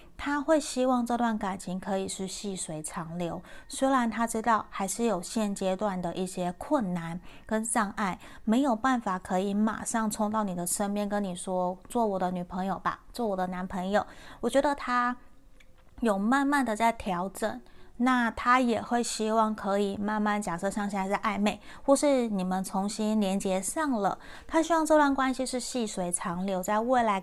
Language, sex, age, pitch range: Chinese, female, 30-49, 190-235 Hz